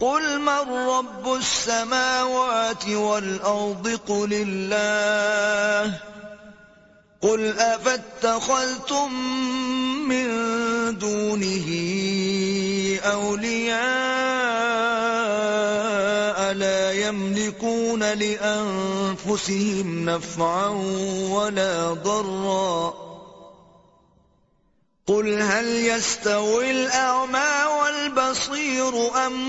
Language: Urdu